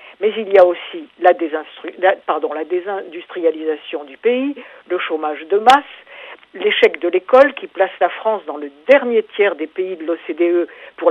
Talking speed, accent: 155 wpm, French